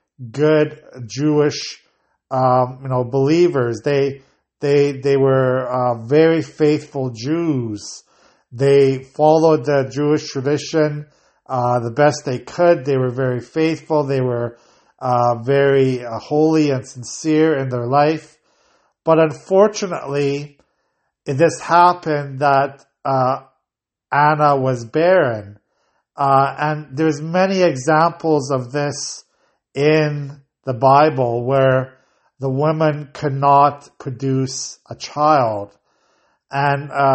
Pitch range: 130-150 Hz